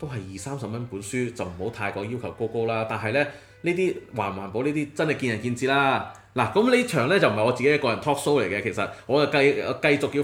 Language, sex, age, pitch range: Chinese, male, 20-39, 105-140 Hz